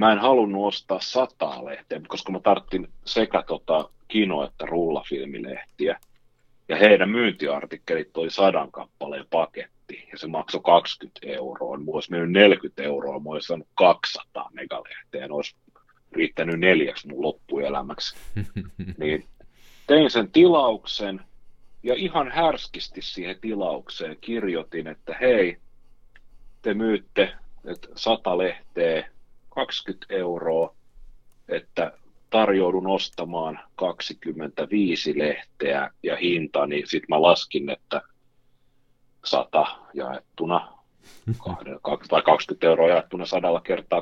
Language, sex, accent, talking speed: Finnish, male, native, 110 wpm